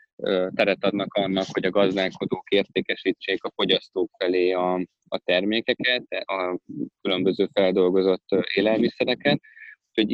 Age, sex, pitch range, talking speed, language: 20-39, male, 95-110 Hz, 105 wpm, Hungarian